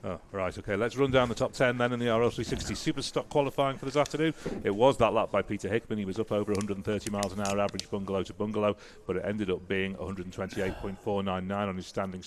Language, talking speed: English, 225 wpm